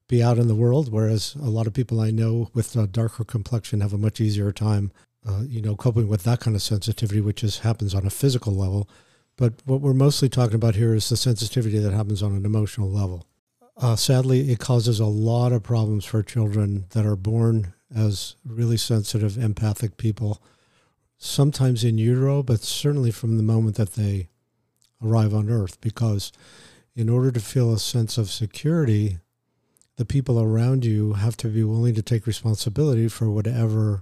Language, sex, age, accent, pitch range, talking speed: English, male, 50-69, American, 105-120 Hz, 185 wpm